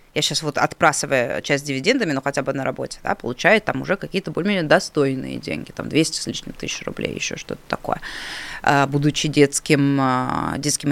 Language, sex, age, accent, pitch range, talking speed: Russian, female, 20-39, native, 140-175 Hz, 170 wpm